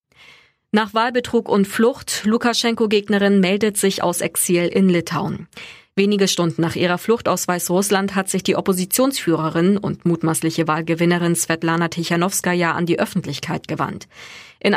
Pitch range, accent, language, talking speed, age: 170-205 Hz, German, German, 135 wpm, 20-39